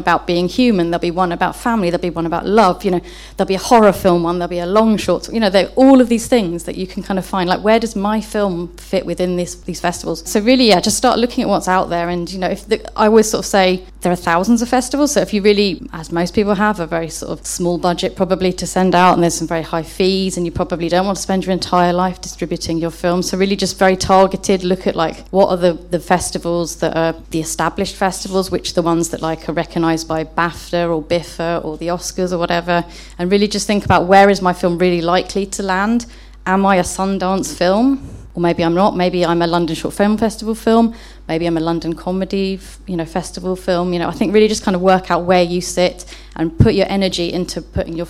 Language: English